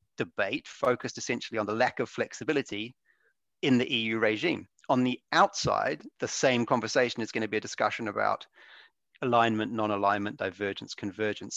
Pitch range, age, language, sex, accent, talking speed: 105-125 Hz, 30-49, English, male, British, 150 wpm